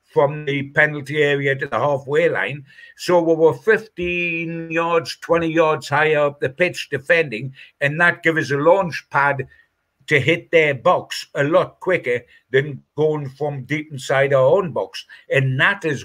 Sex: male